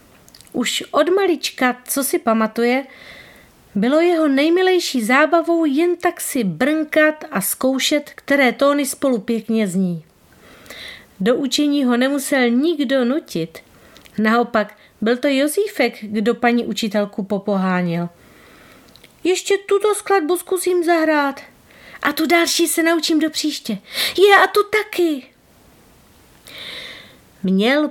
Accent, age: native, 40-59